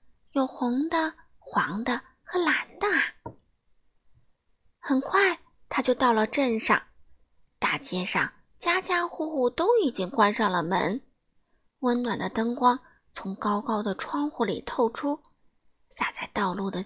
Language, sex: Chinese, female